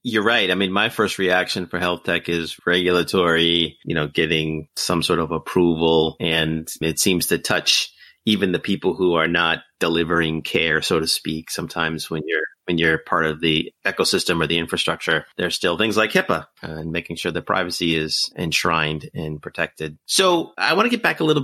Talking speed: 195 wpm